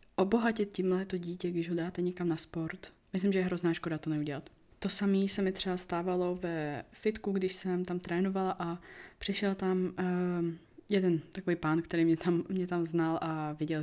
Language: Czech